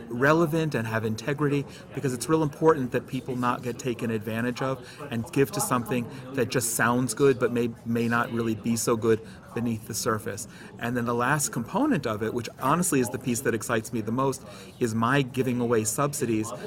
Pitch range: 115-140 Hz